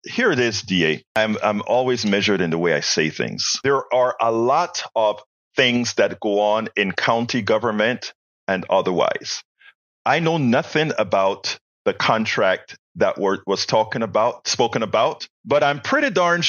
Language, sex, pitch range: English, male, 100-140 Hz